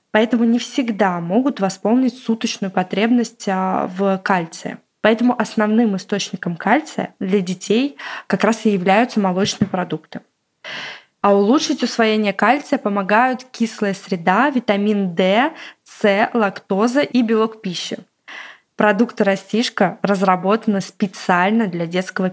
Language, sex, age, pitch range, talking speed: Russian, female, 20-39, 195-235 Hz, 110 wpm